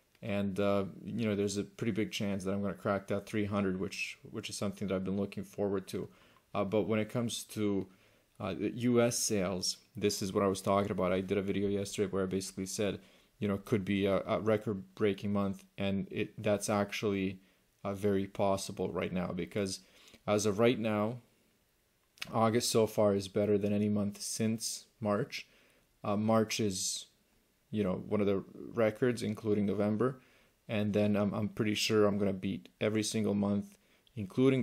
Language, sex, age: English, male, 30-49